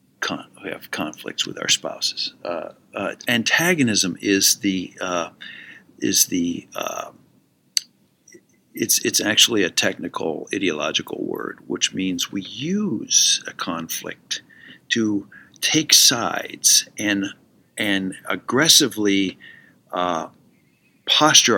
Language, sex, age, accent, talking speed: English, male, 50-69, American, 105 wpm